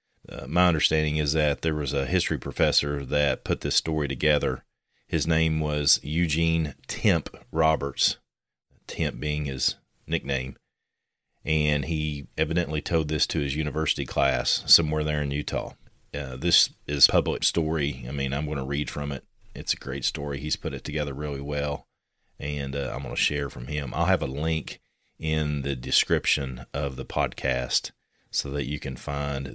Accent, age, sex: American, 40-59, male